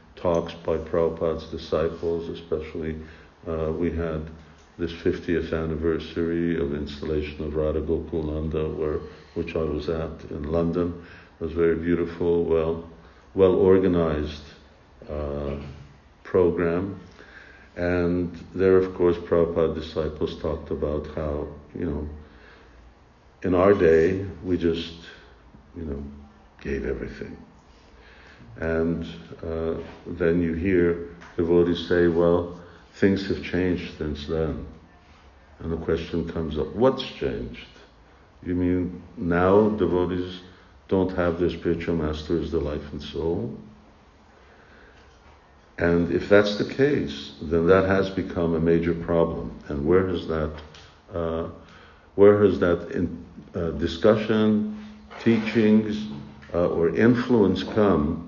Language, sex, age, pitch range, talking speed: English, male, 60-79, 80-90 Hz, 115 wpm